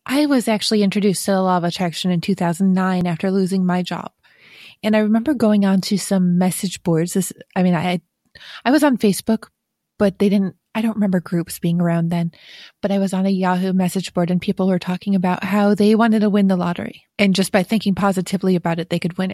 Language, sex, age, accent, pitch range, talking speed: English, female, 20-39, American, 180-220 Hz, 225 wpm